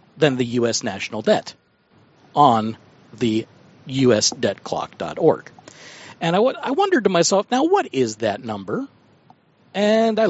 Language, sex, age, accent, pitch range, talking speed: English, male, 50-69, American, 150-225 Hz, 130 wpm